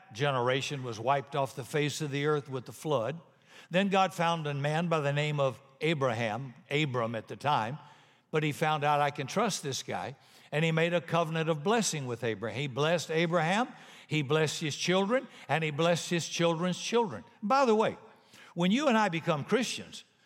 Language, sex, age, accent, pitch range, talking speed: English, male, 60-79, American, 135-180 Hz, 195 wpm